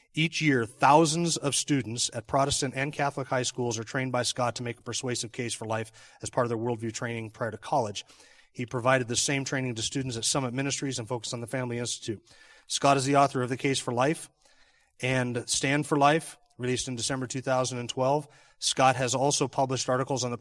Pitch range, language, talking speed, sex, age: 120-140 Hz, English, 210 wpm, male, 30-49